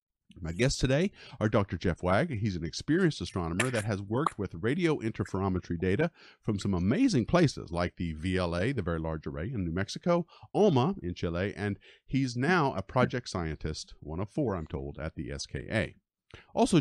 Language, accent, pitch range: English, American, 90-125 Hz